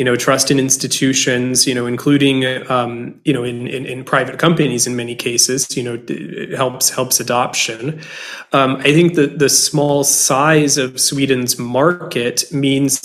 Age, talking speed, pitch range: 20-39, 160 wpm, 125-145 Hz